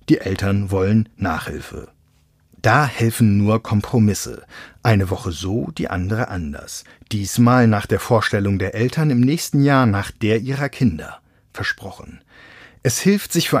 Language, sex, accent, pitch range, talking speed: German, male, German, 105-140 Hz, 140 wpm